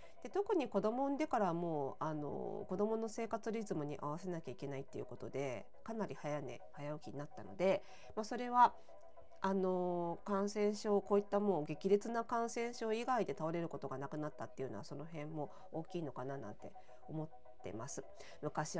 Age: 40-59